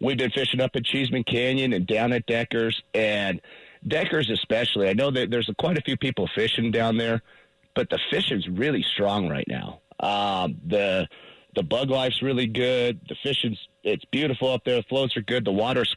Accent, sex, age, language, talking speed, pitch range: American, male, 30-49, English, 195 wpm, 110-135 Hz